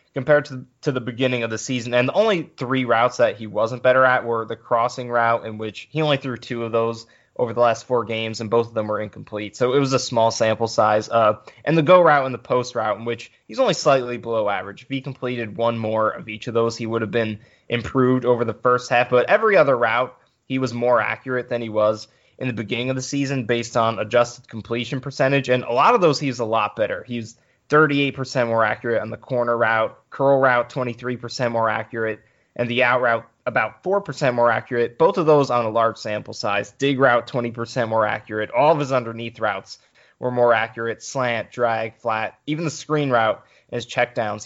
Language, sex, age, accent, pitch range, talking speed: English, male, 20-39, American, 115-130 Hz, 220 wpm